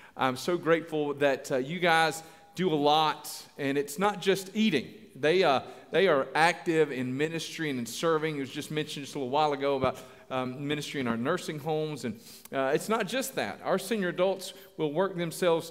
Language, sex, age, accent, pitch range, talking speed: English, male, 40-59, American, 135-170 Hz, 205 wpm